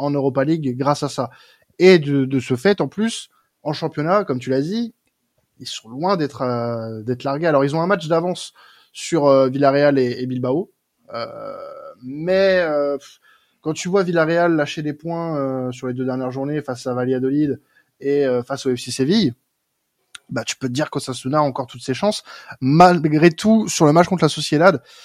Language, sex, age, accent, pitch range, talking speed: French, male, 20-39, French, 130-165 Hz, 195 wpm